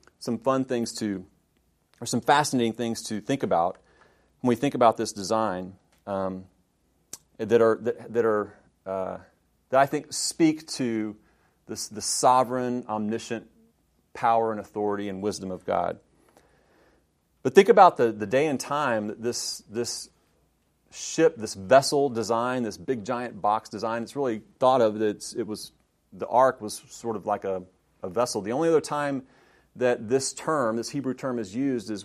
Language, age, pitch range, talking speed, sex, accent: English, 30-49, 105-125 Hz, 165 wpm, male, American